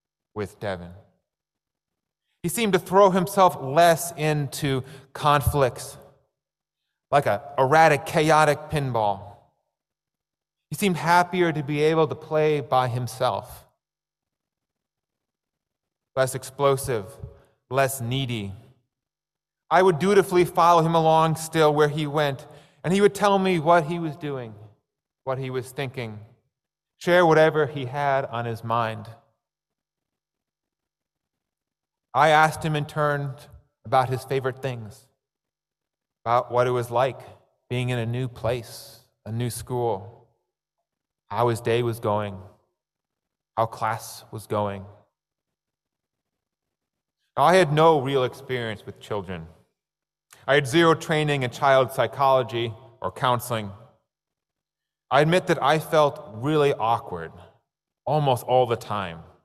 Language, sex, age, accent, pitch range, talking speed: English, male, 30-49, American, 115-155 Hz, 120 wpm